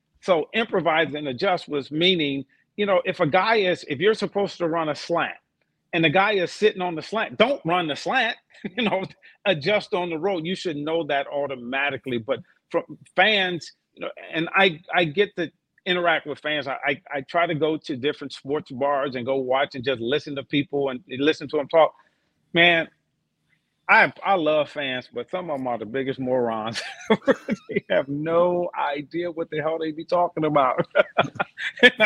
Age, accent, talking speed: 40-59, American, 195 wpm